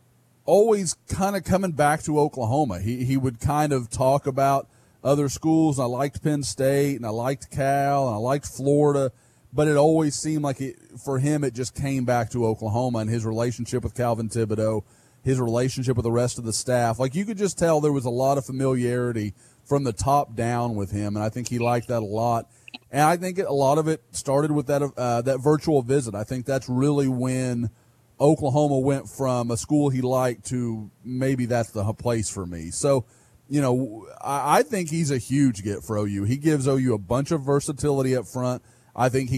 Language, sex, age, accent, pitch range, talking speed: English, male, 30-49, American, 120-150 Hz, 215 wpm